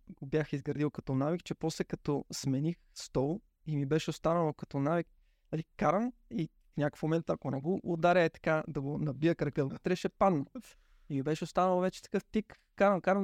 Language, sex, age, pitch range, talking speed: Bulgarian, male, 20-39, 135-170 Hz, 185 wpm